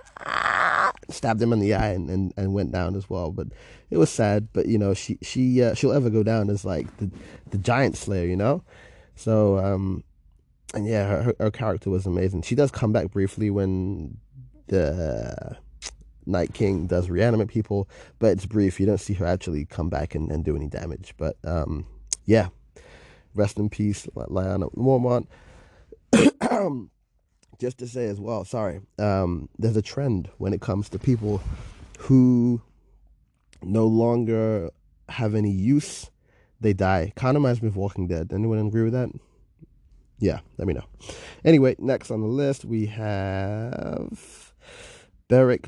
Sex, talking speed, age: male, 170 wpm, 20-39